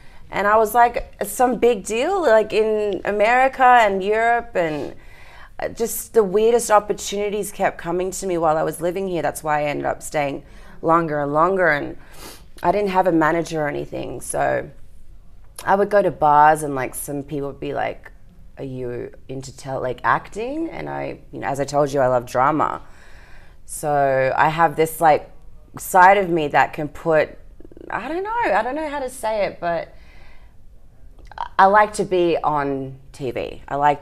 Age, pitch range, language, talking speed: 30-49, 130-175 Hz, English, 180 wpm